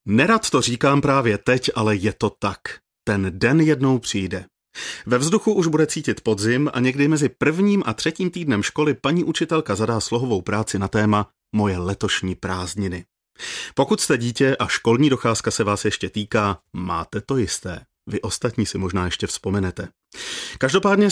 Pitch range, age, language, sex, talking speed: 100-135 Hz, 30-49, Czech, male, 160 wpm